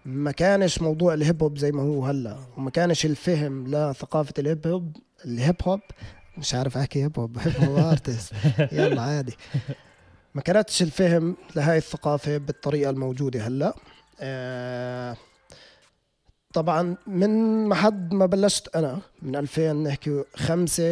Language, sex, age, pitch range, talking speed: Arabic, male, 30-49, 135-165 Hz, 130 wpm